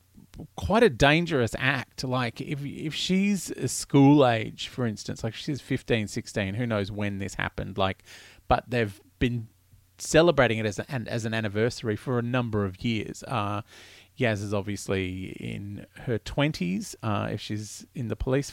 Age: 30-49